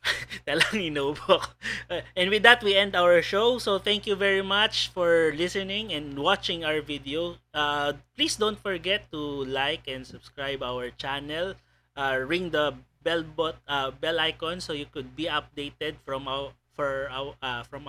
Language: Filipino